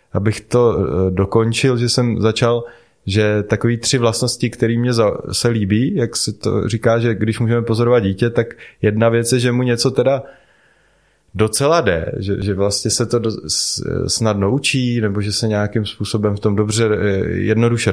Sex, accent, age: male, native, 20-39